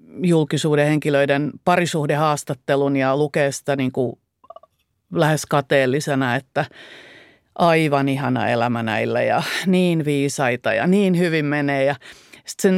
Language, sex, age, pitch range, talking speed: Finnish, female, 30-49, 140-200 Hz, 105 wpm